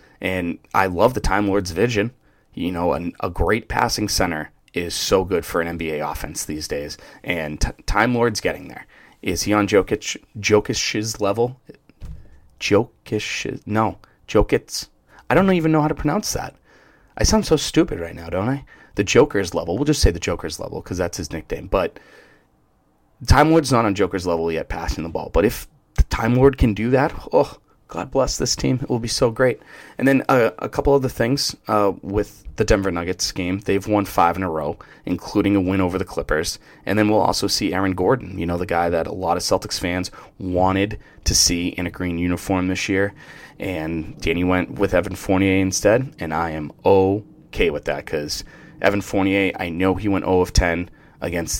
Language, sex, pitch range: English, male, 90-120 Hz